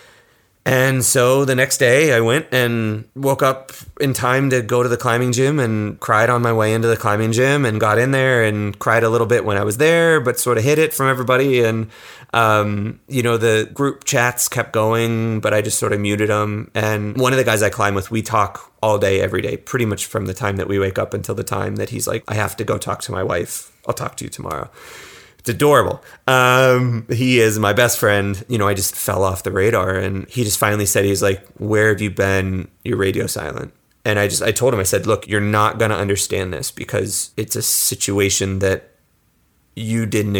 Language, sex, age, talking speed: English, male, 30-49, 235 wpm